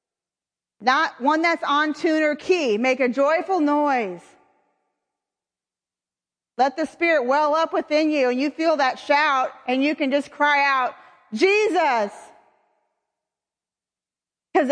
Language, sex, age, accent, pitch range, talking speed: English, female, 40-59, American, 270-355 Hz, 125 wpm